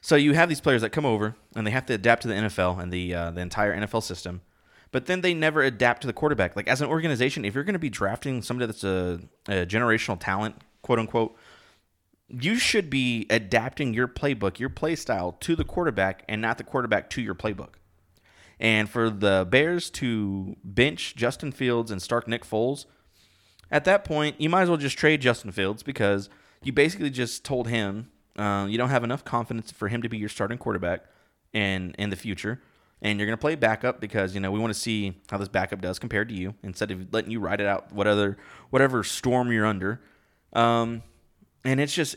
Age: 30-49